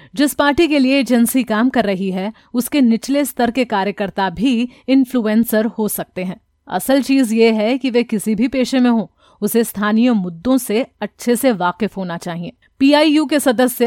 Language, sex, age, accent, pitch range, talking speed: Hindi, female, 30-49, native, 200-255 Hz, 190 wpm